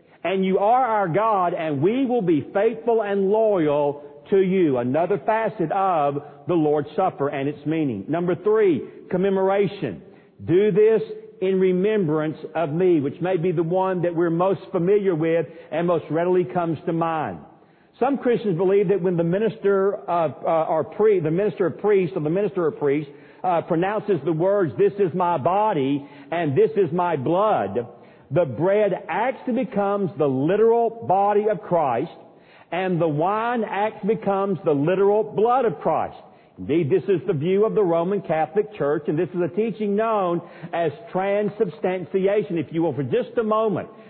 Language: English